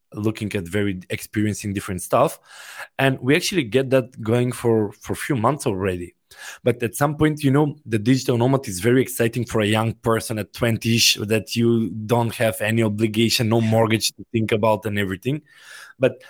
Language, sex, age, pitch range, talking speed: English, male, 20-39, 110-130 Hz, 190 wpm